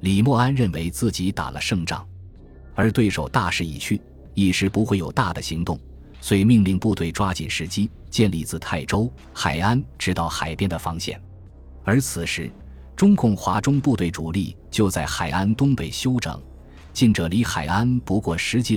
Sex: male